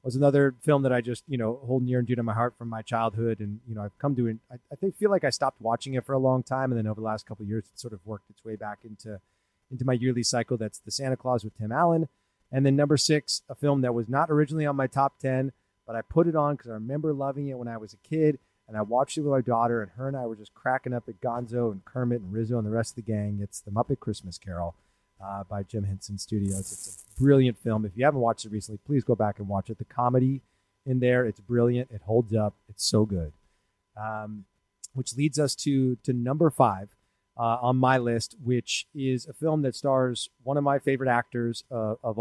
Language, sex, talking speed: English, male, 260 wpm